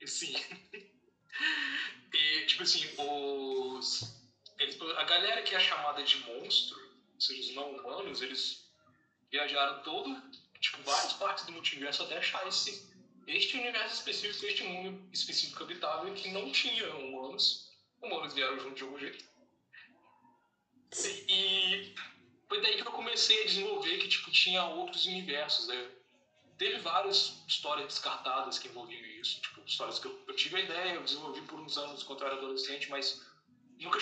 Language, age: Portuguese, 20-39